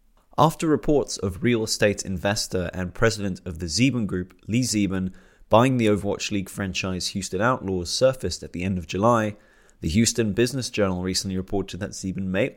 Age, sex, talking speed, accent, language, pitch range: 30-49, male, 170 wpm, British, English, 90-115 Hz